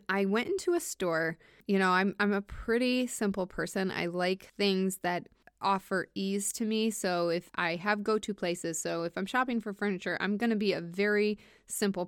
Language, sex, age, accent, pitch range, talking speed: English, female, 20-39, American, 180-220 Hz, 200 wpm